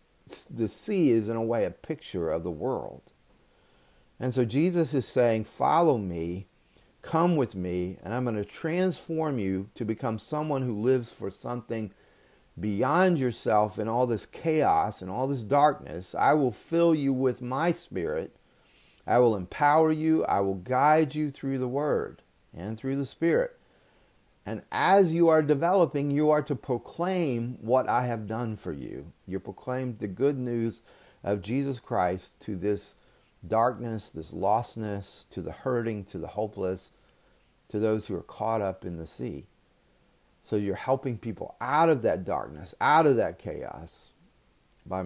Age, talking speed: 40-59, 160 wpm